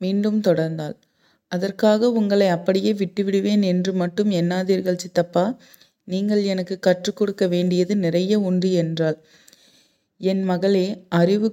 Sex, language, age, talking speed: female, Tamil, 30-49, 110 wpm